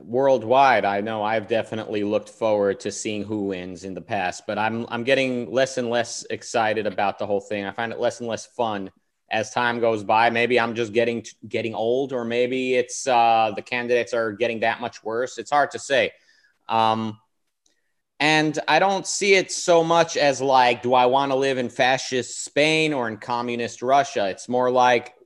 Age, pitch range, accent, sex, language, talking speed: 30-49, 110-135 Hz, American, male, English, 195 wpm